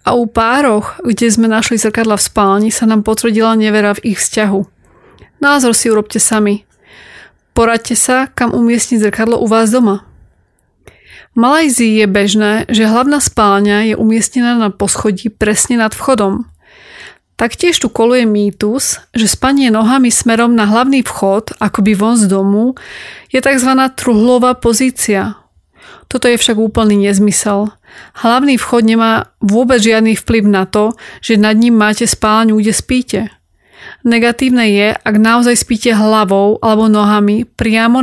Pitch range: 210-240 Hz